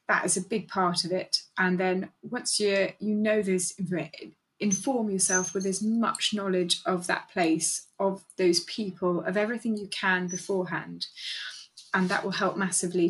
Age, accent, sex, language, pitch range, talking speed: 20-39, British, female, English, 185-210 Hz, 160 wpm